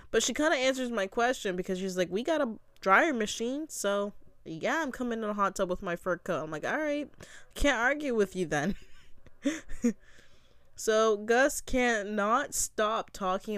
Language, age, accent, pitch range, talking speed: English, 20-39, American, 150-200 Hz, 180 wpm